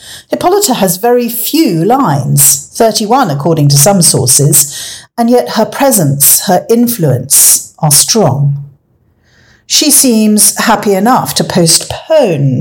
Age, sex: 50-69, female